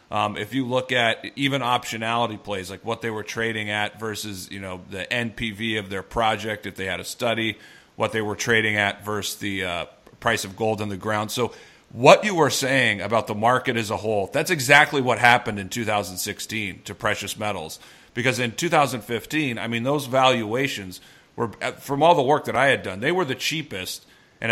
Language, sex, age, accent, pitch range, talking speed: English, male, 40-59, American, 105-125 Hz, 200 wpm